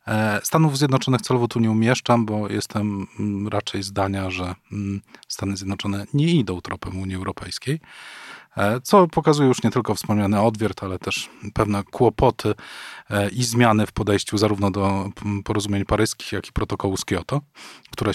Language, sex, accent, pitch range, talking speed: Polish, male, native, 100-125 Hz, 140 wpm